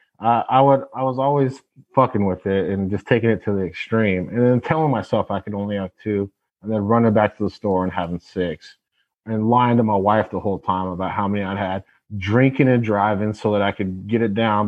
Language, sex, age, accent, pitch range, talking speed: English, male, 30-49, American, 100-125 Hz, 235 wpm